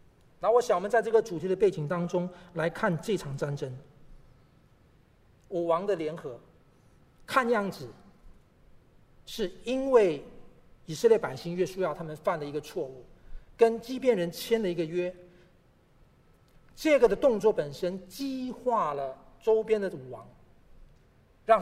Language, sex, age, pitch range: Chinese, male, 40-59, 160-235 Hz